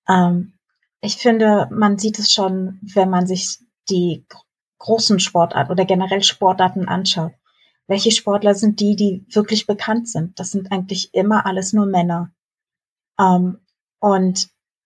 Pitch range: 185-215 Hz